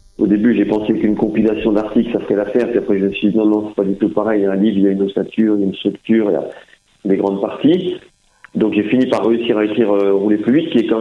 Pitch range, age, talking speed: 105-125 Hz, 40-59, 320 wpm